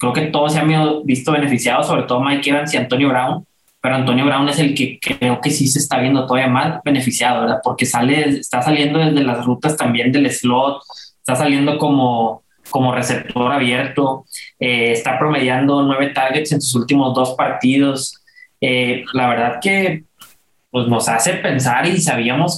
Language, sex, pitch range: Spanish, male, 125-155 Hz